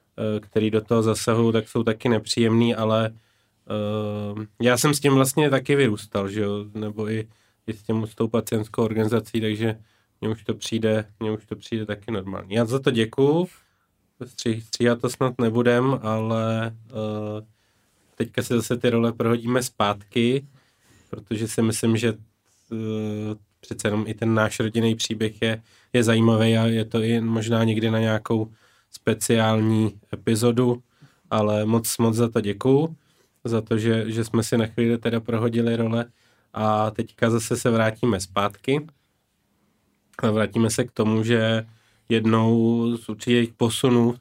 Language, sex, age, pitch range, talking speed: Czech, male, 20-39, 110-115 Hz, 150 wpm